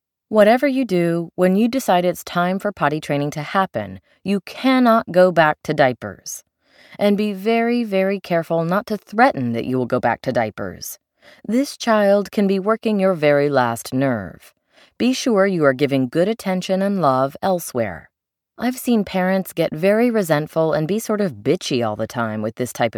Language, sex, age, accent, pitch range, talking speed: English, female, 30-49, American, 145-225 Hz, 185 wpm